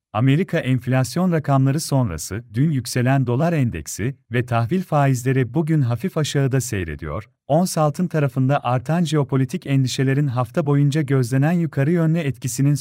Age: 40-59